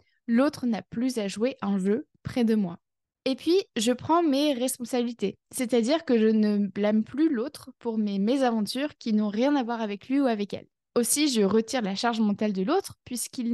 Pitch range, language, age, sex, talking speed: 220-270 Hz, French, 20-39, female, 200 wpm